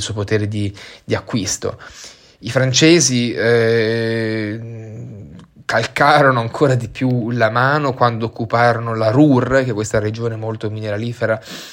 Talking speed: 145 wpm